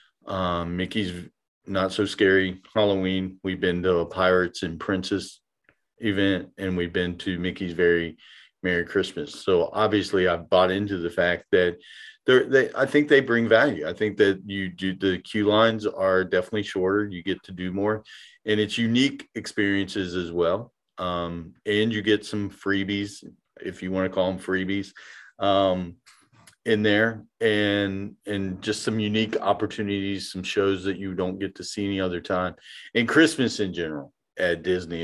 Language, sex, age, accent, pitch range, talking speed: English, male, 40-59, American, 90-105 Hz, 170 wpm